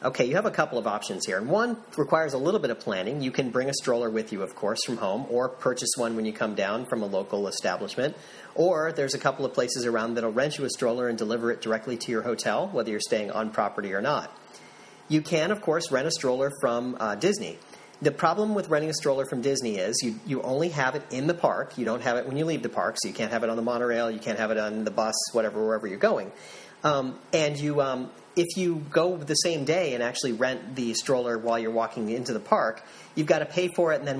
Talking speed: 260 wpm